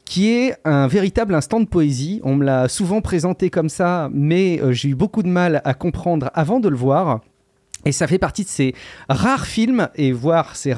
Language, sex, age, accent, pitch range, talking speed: French, male, 30-49, French, 140-195 Hz, 210 wpm